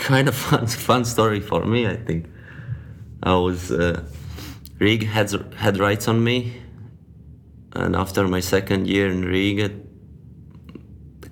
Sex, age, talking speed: male, 20-39, 140 wpm